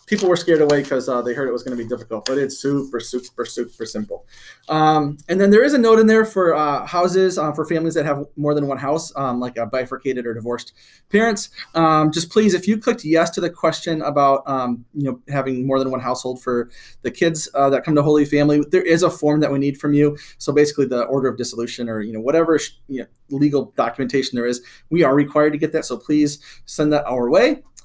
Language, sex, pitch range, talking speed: English, male, 130-165 Hz, 240 wpm